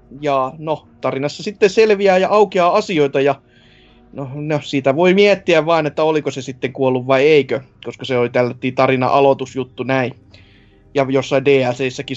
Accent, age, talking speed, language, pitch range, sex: native, 20-39, 155 wpm, Finnish, 130-155 Hz, male